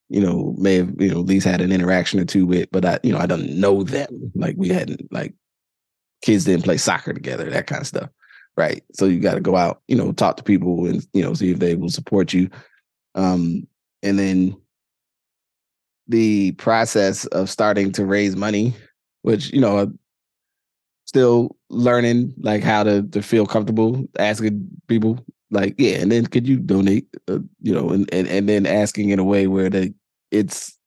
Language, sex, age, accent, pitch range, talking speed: English, male, 20-39, American, 95-120 Hz, 195 wpm